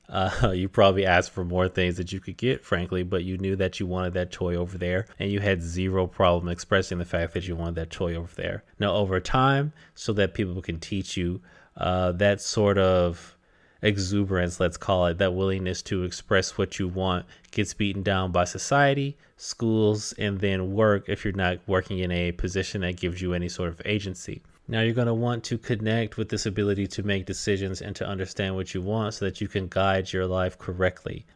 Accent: American